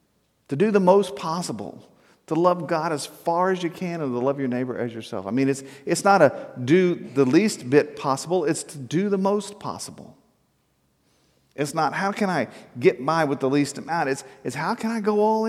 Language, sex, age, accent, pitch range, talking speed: English, male, 50-69, American, 120-175 Hz, 215 wpm